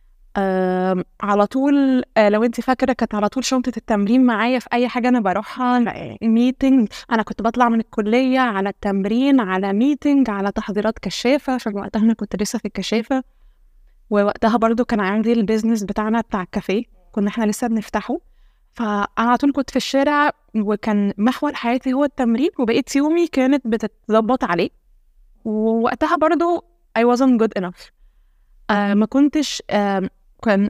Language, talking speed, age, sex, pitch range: Arabic, 145 wpm, 20-39, female, 210-260 Hz